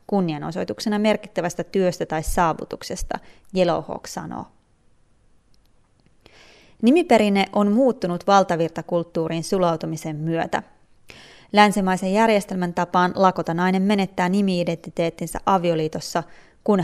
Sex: female